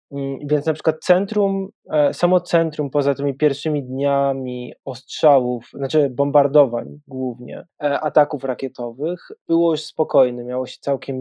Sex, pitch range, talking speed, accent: male, 135-160 Hz, 120 wpm, native